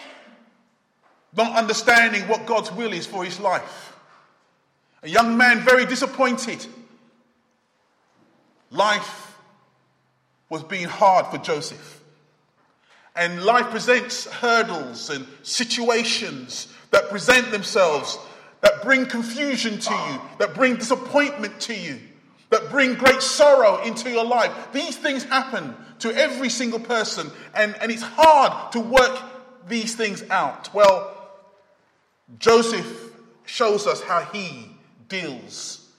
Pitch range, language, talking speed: 200-250 Hz, English, 115 wpm